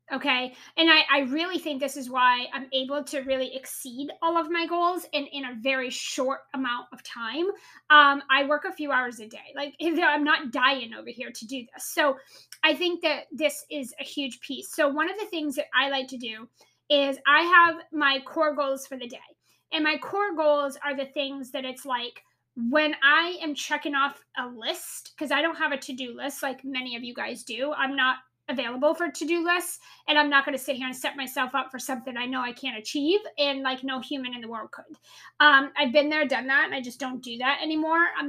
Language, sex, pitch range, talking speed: English, female, 260-310 Hz, 235 wpm